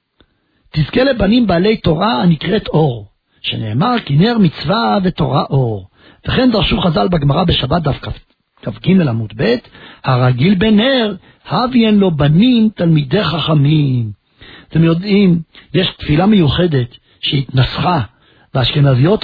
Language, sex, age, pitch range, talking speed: Hebrew, male, 60-79, 135-190 Hz, 115 wpm